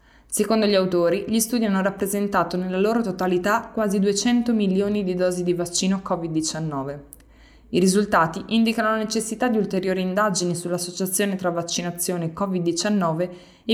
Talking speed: 135 wpm